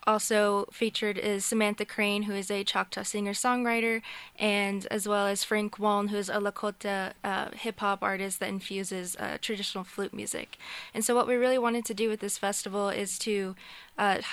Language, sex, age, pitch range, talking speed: English, female, 20-39, 195-220 Hz, 180 wpm